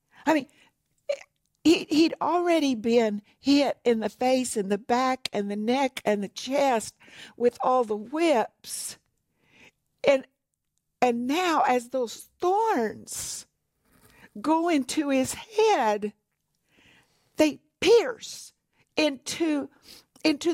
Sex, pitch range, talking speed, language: female, 240-315 Hz, 110 wpm, English